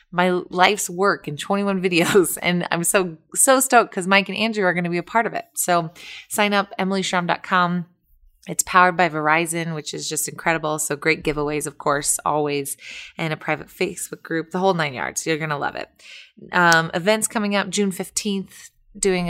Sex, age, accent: female, 20-39, American